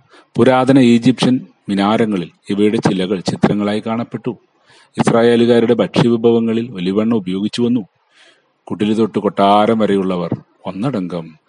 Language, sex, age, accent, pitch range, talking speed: Malayalam, male, 40-59, native, 95-115 Hz, 95 wpm